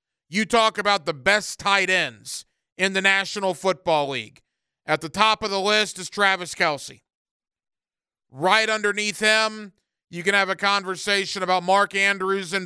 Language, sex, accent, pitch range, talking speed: English, male, American, 180-200 Hz, 155 wpm